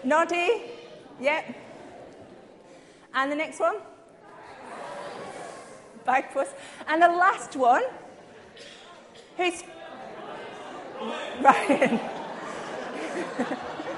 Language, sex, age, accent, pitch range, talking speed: English, female, 30-49, British, 235-315 Hz, 55 wpm